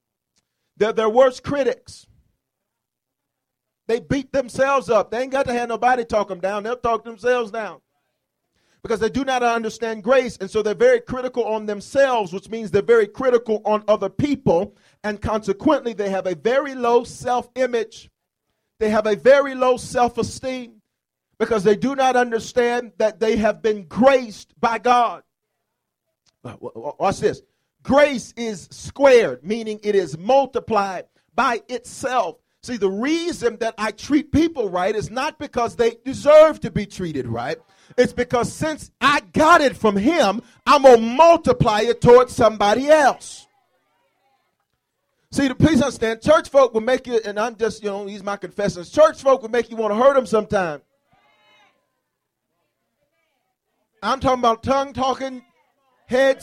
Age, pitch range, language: 40-59, 215-265 Hz, English